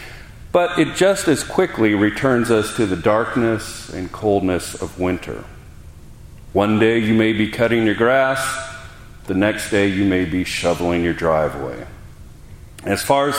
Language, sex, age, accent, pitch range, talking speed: English, male, 40-59, American, 100-130 Hz, 150 wpm